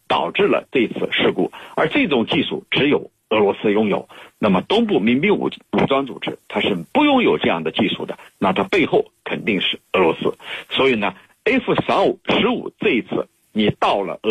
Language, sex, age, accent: Chinese, male, 50-69, native